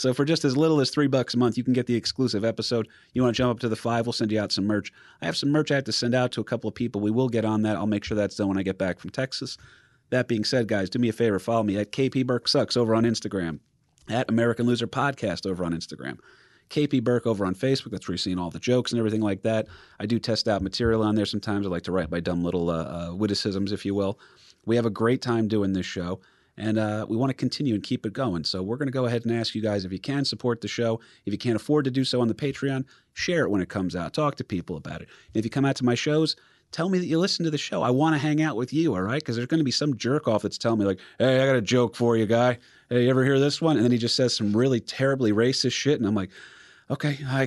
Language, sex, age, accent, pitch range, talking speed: English, male, 30-49, American, 105-135 Hz, 305 wpm